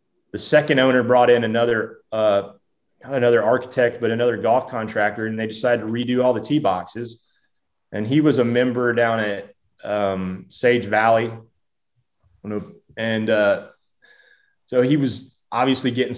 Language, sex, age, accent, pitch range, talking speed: English, male, 20-39, American, 110-130 Hz, 150 wpm